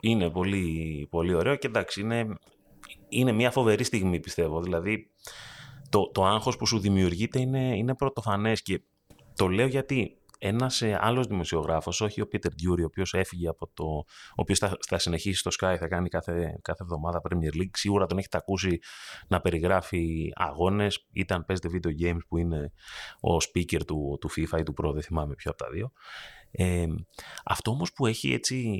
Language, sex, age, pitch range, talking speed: Greek, male, 30-49, 85-115 Hz, 175 wpm